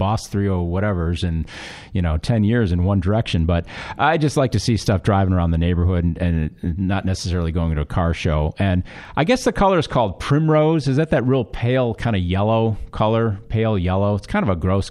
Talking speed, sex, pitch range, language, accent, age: 225 wpm, male, 85-115 Hz, English, American, 40-59